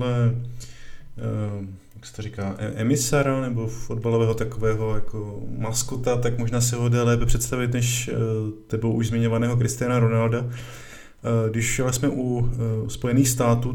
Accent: native